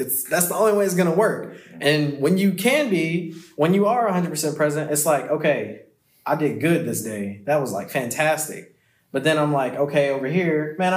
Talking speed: 215 wpm